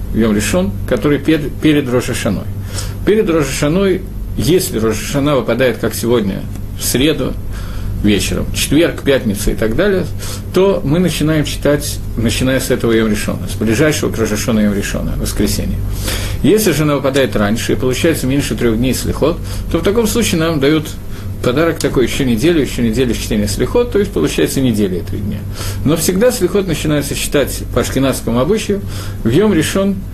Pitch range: 100-150 Hz